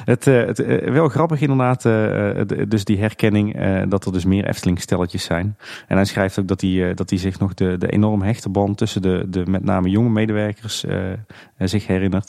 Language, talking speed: Dutch, 195 wpm